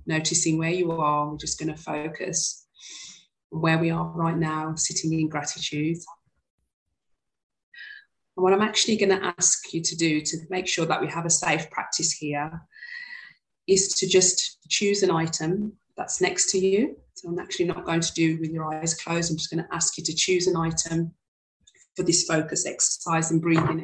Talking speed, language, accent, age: 185 wpm, English, British, 30-49